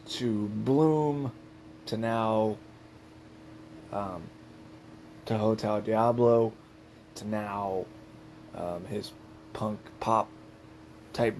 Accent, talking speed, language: American, 80 wpm, English